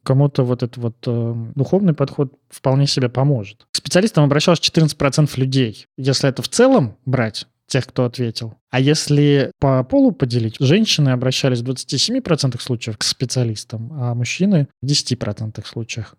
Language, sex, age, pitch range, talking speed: Russian, male, 20-39, 125-160 Hz, 150 wpm